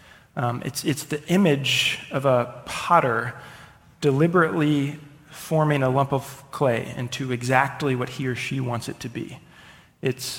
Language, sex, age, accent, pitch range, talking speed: English, male, 30-49, American, 125-155 Hz, 145 wpm